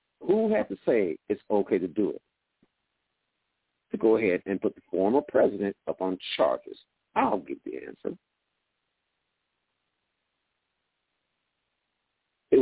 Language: English